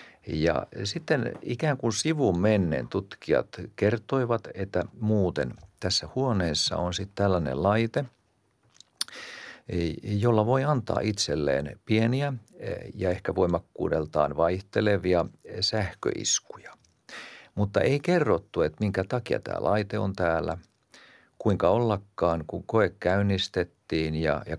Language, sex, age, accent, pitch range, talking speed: Finnish, male, 50-69, native, 85-105 Hz, 100 wpm